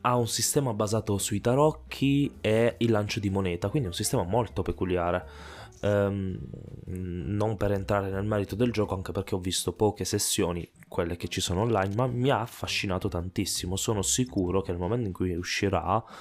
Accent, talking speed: native, 180 wpm